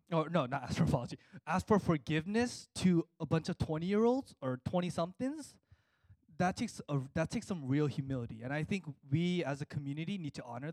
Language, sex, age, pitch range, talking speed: English, male, 20-39, 140-180 Hz, 195 wpm